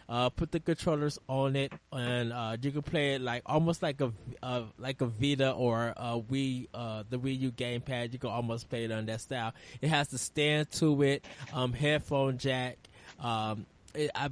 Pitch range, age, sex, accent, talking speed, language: 120-145 Hz, 20-39, male, American, 205 wpm, English